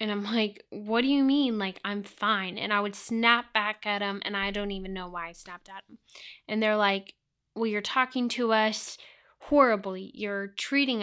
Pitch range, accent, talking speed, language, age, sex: 200-225 Hz, American, 205 wpm, English, 10-29, female